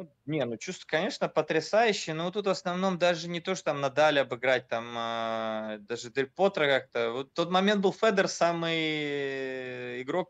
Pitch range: 125-170 Hz